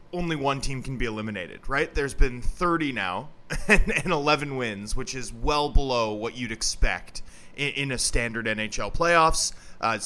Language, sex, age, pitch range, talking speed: English, male, 20-39, 115-145 Hz, 180 wpm